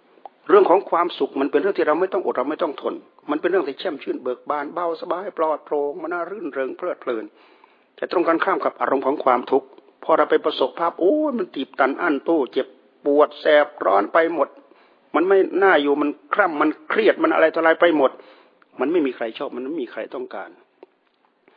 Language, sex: Thai, male